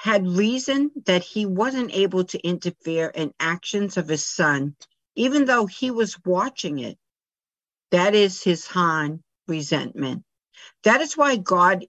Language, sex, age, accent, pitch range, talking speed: English, female, 60-79, American, 165-210 Hz, 140 wpm